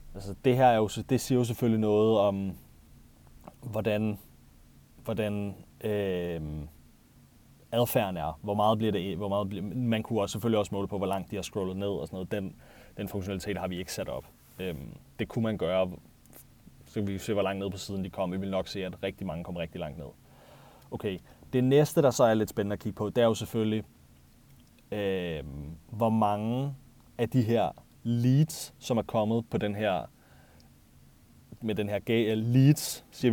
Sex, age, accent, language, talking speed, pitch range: male, 30-49, native, Danish, 190 wpm, 95-115 Hz